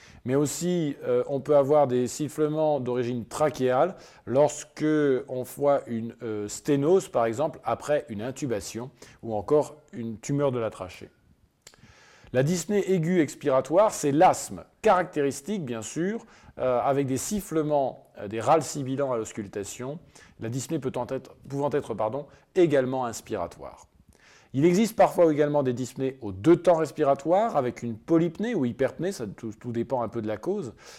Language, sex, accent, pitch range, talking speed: French, male, French, 125-160 Hz, 155 wpm